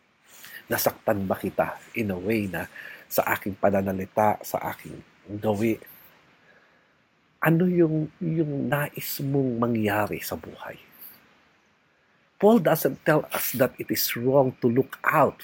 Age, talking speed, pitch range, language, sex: 50-69, 115 wpm, 130-185 Hz, English, male